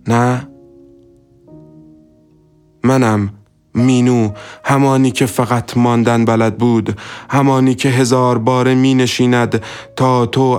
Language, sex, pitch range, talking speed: Persian, male, 105-125 Hz, 95 wpm